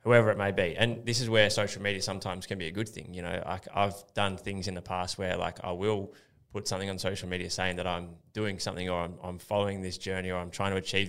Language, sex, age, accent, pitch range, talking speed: English, male, 20-39, Australian, 95-105 Hz, 270 wpm